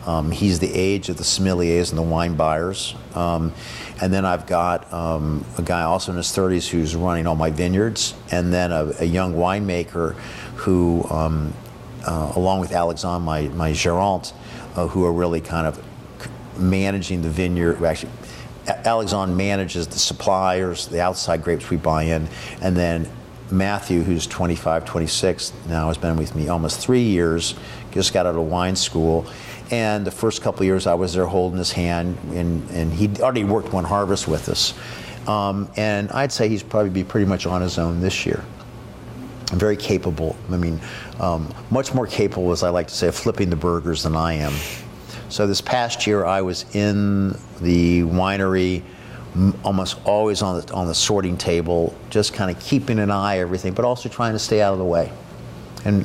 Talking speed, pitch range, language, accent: 185 wpm, 85-100 Hz, English, American